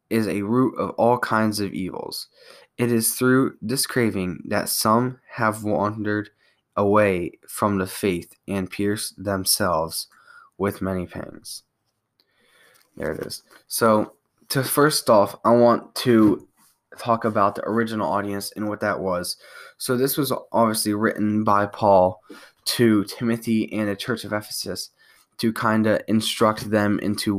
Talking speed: 145 wpm